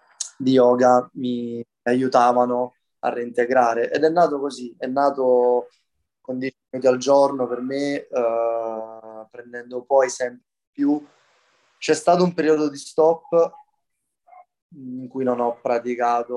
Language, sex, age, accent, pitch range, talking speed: Italian, male, 20-39, native, 120-130 Hz, 130 wpm